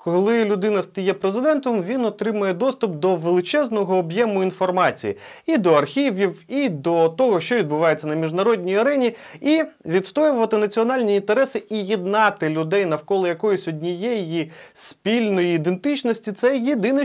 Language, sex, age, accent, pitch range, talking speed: Ukrainian, male, 30-49, native, 160-240 Hz, 130 wpm